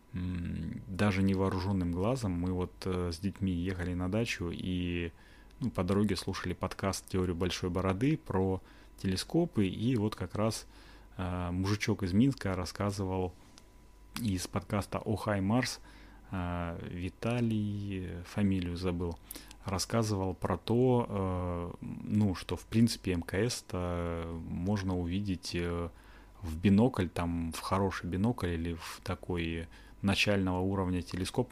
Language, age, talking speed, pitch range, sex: Russian, 30-49, 110 wpm, 90-105 Hz, male